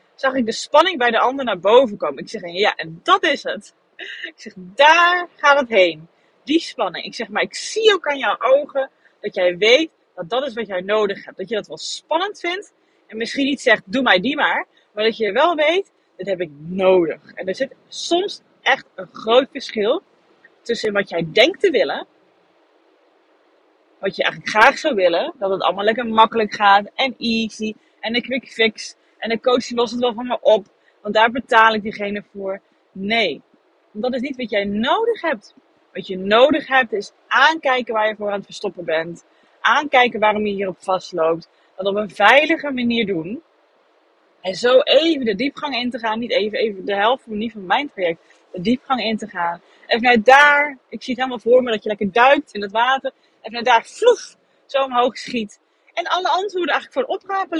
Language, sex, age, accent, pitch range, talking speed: Dutch, female, 30-49, Dutch, 205-285 Hz, 205 wpm